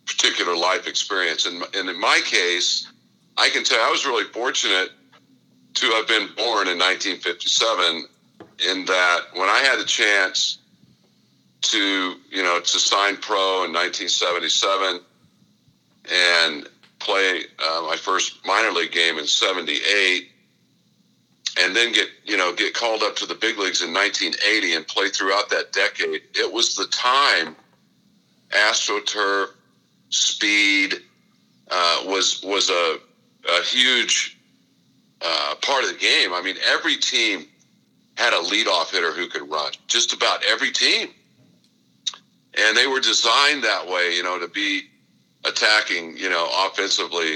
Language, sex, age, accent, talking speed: English, male, 50-69, American, 140 wpm